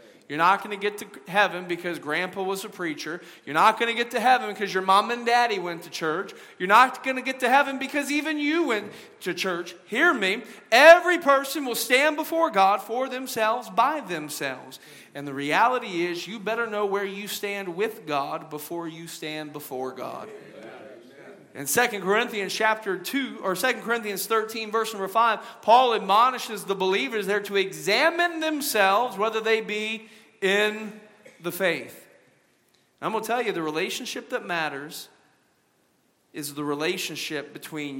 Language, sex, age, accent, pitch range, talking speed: English, male, 40-59, American, 175-230 Hz, 170 wpm